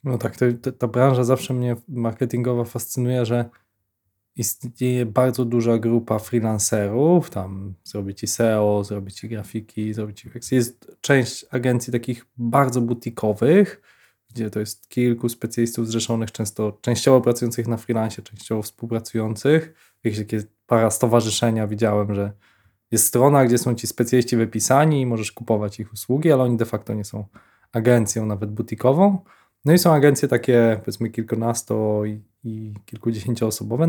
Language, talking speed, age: Polish, 140 wpm, 20-39